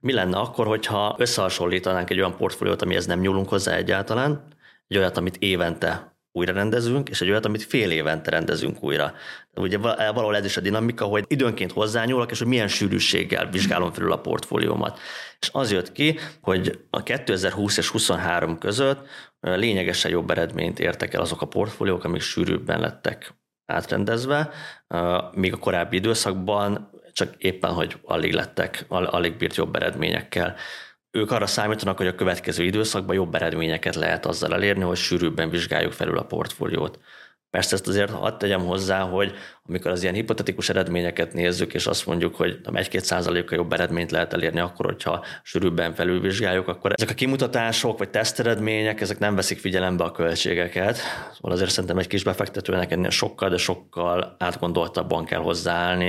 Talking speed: 160 wpm